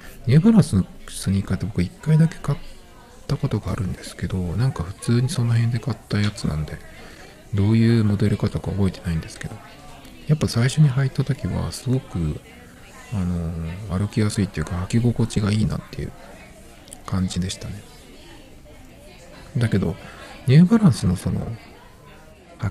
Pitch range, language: 90-125 Hz, Japanese